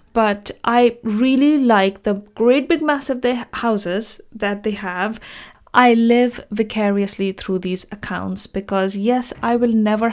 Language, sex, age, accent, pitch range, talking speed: English, female, 30-49, Indian, 195-235 Hz, 135 wpm